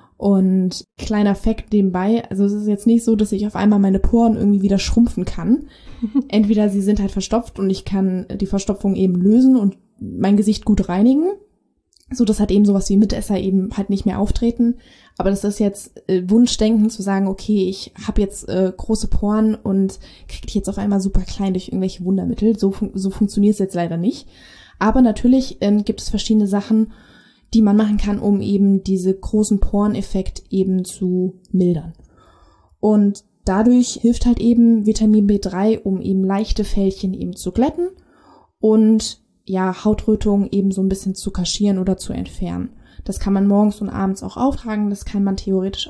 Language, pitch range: German, 195-220 Hz